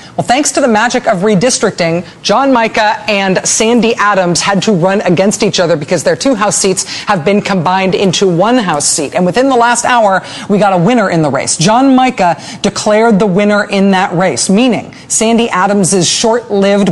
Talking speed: 190 wpm